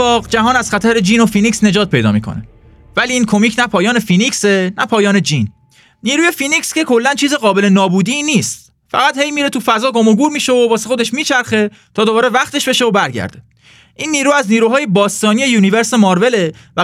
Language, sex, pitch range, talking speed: Persian, male, 185-250 Hz, 190 wpm